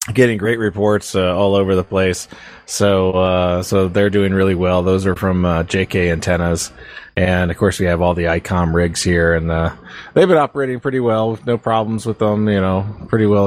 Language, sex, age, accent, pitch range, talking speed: English, male, 30-49, American, 90-115 Hz, 205 wpm